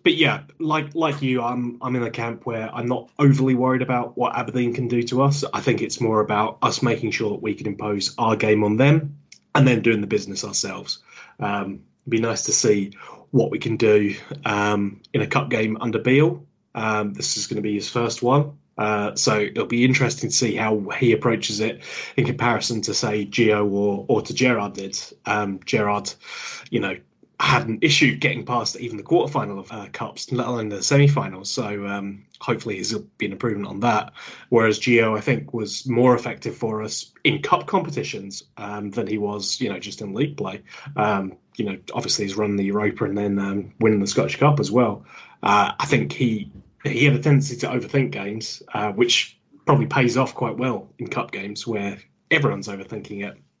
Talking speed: 205 wpm